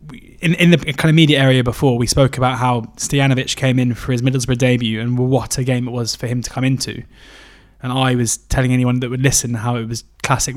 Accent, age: British, 20-39